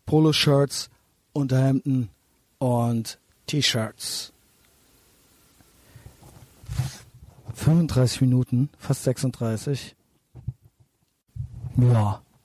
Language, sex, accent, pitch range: German, male, German, 125-140 Hz